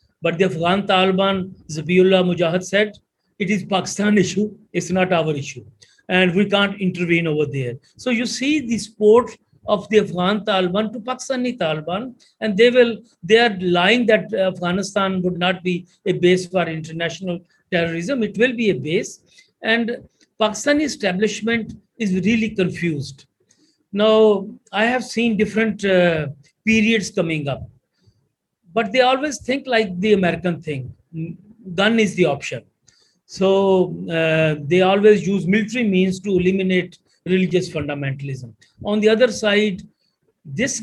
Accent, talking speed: Indian, 145 wpm